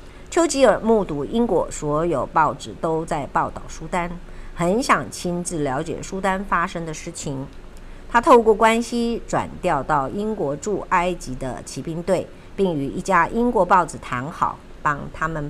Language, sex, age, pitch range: Chinese, male, 50-69, 145-210 Hz